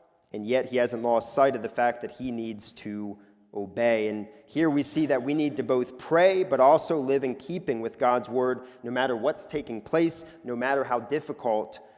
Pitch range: 120-155 Hz